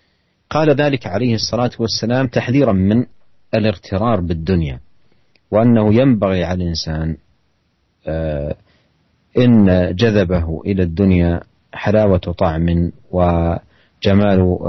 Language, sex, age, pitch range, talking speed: Indonesian, male, 40-59, 90-110 Hz, 80 wpm